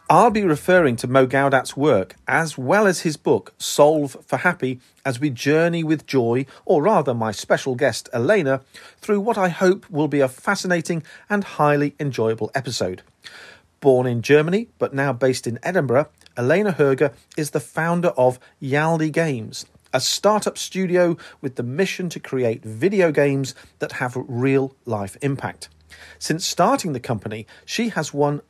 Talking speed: 160 wpm